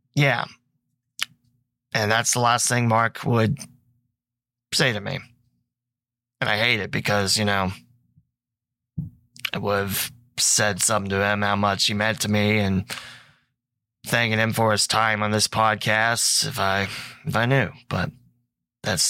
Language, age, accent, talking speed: English, 20-39, American, 150 wpm